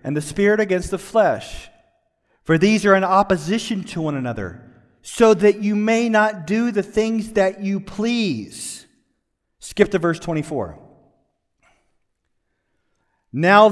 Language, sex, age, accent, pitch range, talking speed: English, male, 40-59, American, 150-215 Hz, 130 wpm